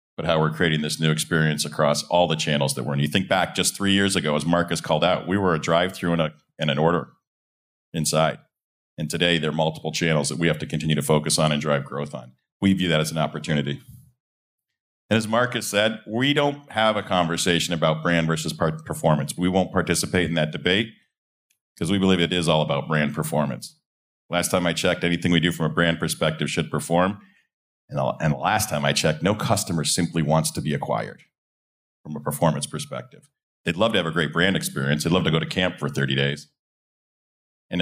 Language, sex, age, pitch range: English, male, 40-59, 75-90 Hz